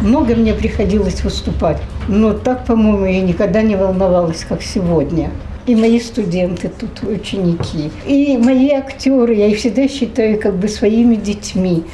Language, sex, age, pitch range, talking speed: Russian, female, 60-79, 195-265 Hz, 135 wpm